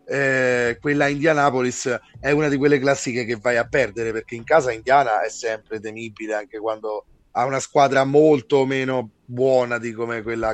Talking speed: 165 wpm